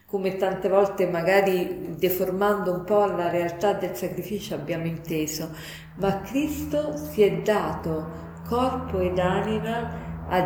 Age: 50-69